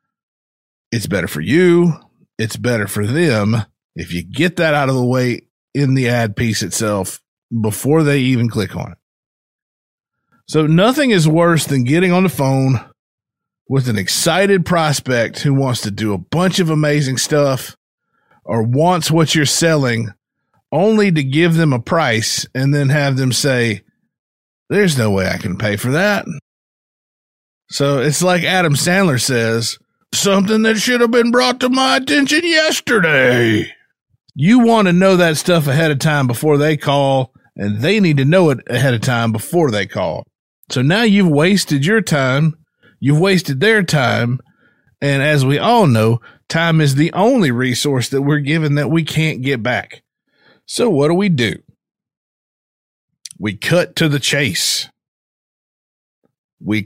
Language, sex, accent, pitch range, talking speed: English, male, American, 120-170 Hz, 160 wpm